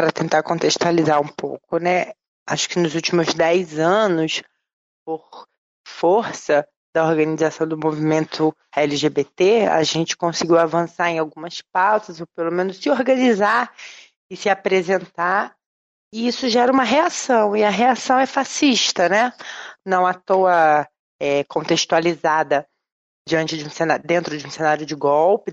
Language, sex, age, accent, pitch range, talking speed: Portuguese, female, 20-39, Brazilian, 155-210 Hz, 140 wpm